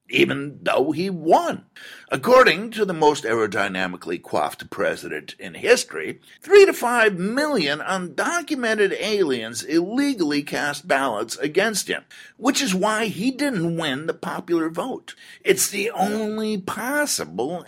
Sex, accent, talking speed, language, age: male, American, 125 wpm, English, 60-79